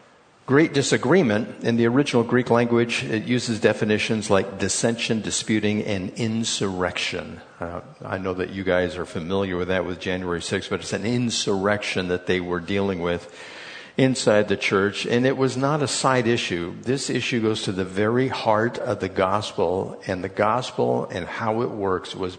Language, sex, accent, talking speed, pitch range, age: English, male, American, 175 wpm, 95-120 Hz, 50-69